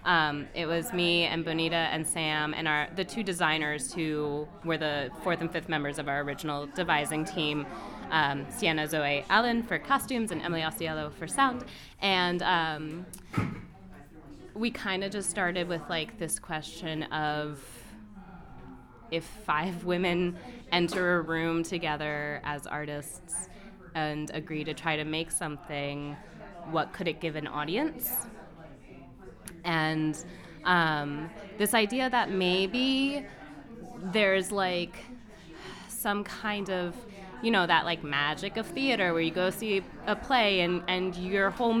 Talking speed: 140 wpm